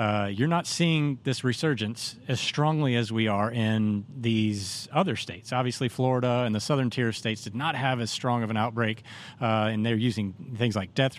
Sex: male